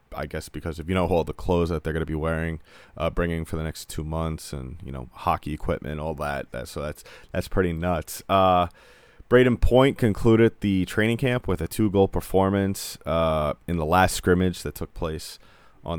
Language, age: English, 20-39